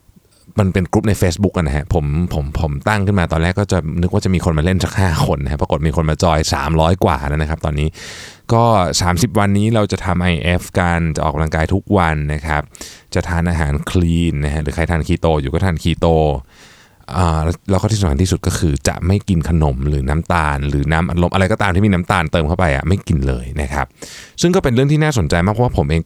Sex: male